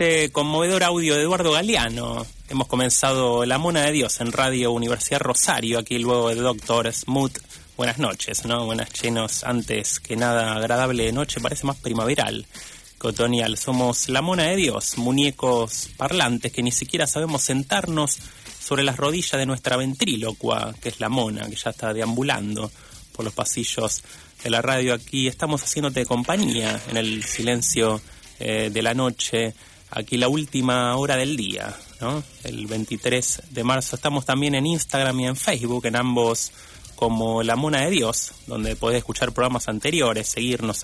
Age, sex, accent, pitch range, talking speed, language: 30-49, male, Argentinian, 115-135 Hz, 160 wpm, Spanish